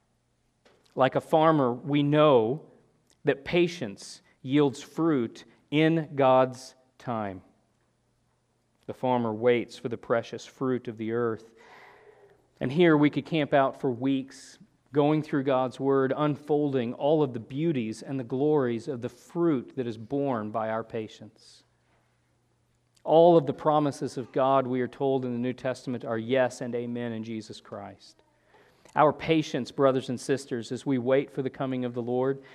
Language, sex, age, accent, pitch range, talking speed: English, male, 40-59, American, 120-155 Hz, 155 wpm